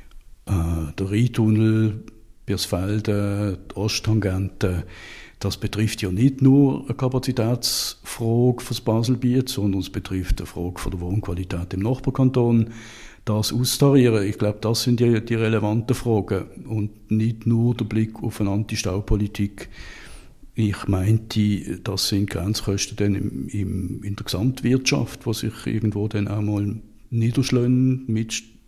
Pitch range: 100-115 Hz